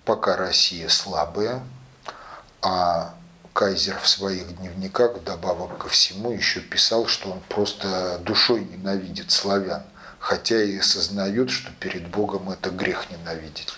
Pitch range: 95-140 Hz